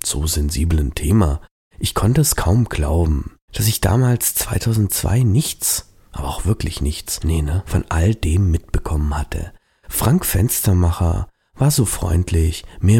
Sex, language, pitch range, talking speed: male, German, 80-110 Hz, 135 wpm